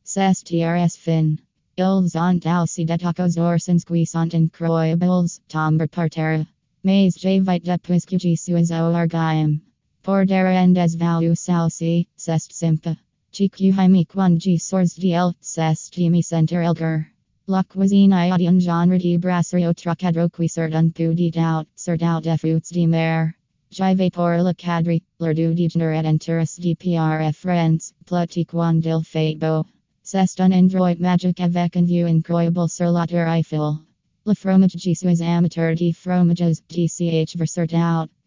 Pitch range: 160-180 Hz